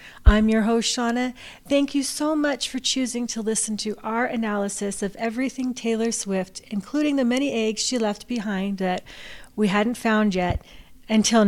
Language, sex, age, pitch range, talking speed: English, female, 40-59, 205-245 Hz, 165 wpm